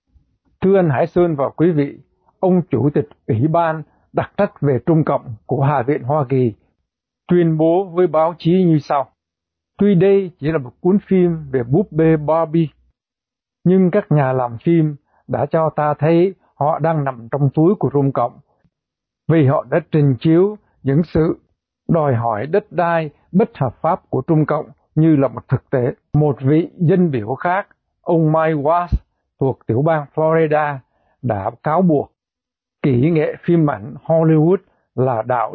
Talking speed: 170 wpm